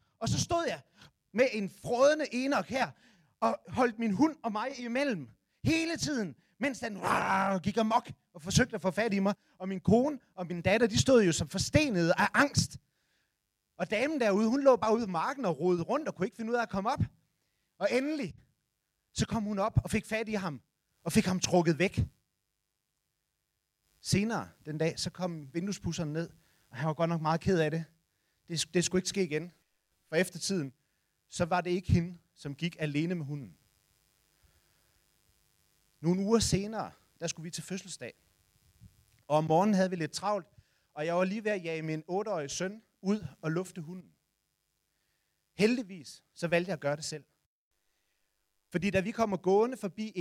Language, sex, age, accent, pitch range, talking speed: Danish, male, 30-49, native, 170-220 Hz, 190 wpm